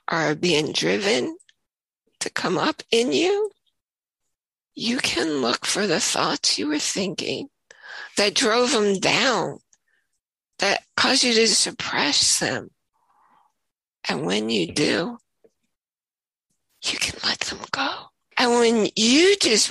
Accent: American